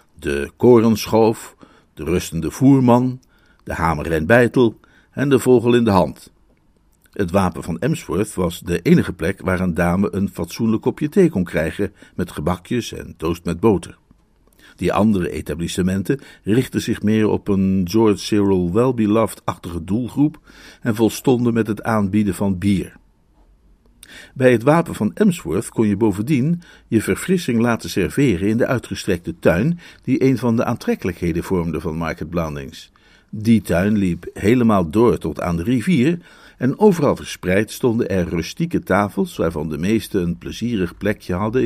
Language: Dutch